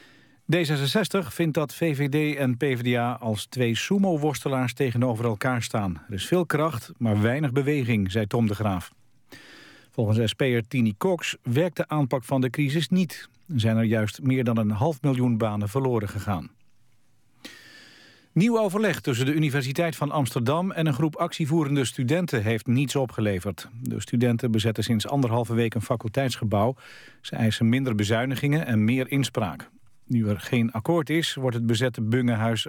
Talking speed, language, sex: 155 wpm, Dutch, male